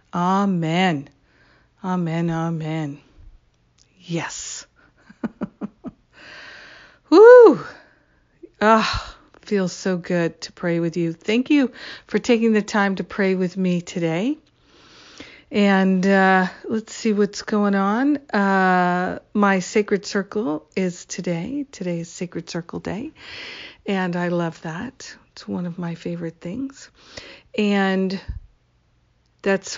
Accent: American